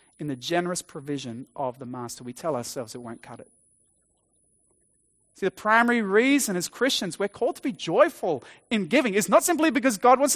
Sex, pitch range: male, 180-245 Hz